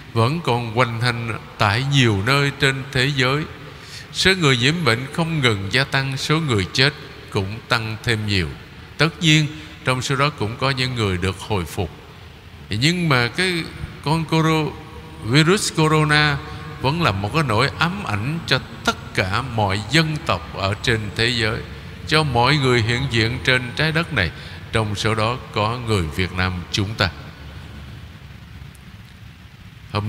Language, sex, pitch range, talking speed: Vietnamese, male, 105-150 Hz, 160 wpm